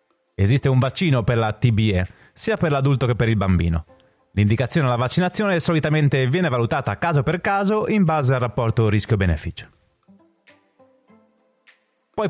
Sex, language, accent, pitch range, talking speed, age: male, Italian, native, 105-160 Hz, 135 wpm, 30-49